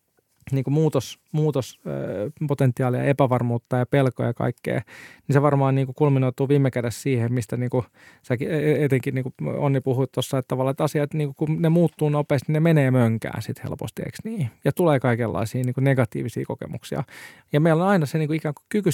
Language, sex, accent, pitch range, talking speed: Finnish, male, native, 125-150 Hz, 180 wpm